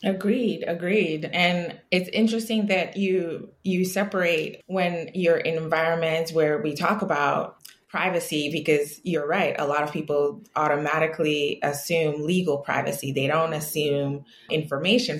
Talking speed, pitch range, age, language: 130 wpm, 145-180 Hz, 20-39, English